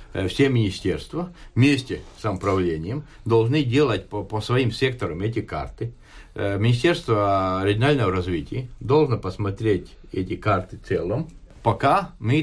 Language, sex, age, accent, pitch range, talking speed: Russian, male, 50-69, native, 100-135 Hz, 110 wpm